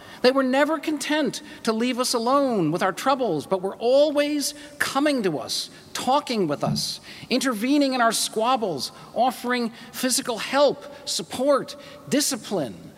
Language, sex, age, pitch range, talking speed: English, male, 40-59, 215-275 Hz, 135 wpm